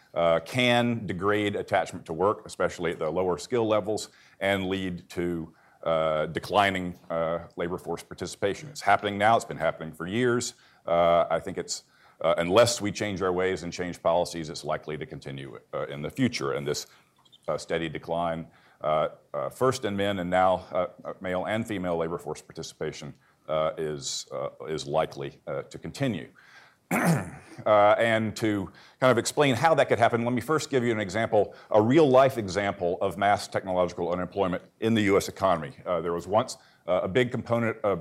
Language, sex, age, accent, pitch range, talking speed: English, male, 50-69, American, 90-115 Hz, 180 wpm